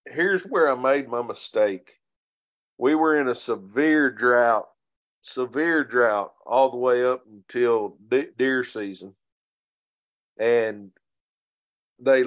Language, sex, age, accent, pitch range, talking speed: English, male, 50-69, American, 120-145 Hz, 115 wpm